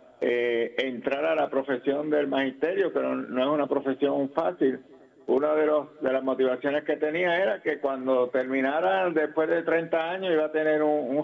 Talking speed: 175 wpm